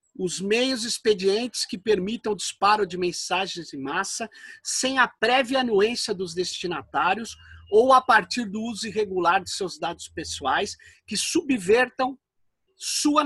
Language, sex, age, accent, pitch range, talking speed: Portuguese, male, 50-69, Brazilian, 225-320 Hz, 135 wpm